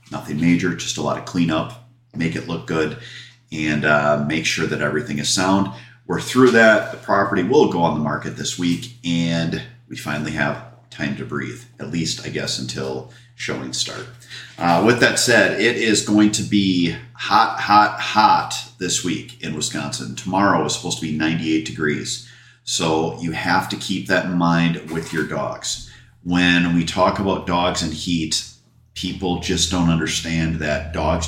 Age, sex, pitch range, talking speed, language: 40-59, male, 75-90 Hz, 180 wpm, English